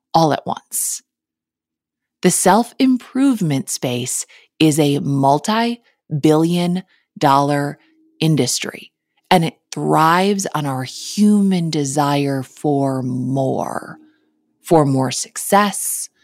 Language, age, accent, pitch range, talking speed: English, 20-39, American, 140-195 Hz, 85 wpm